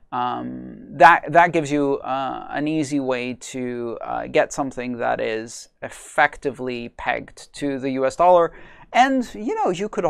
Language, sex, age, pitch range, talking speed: English, male, 30-49, 125-170 Hz, 155 wpm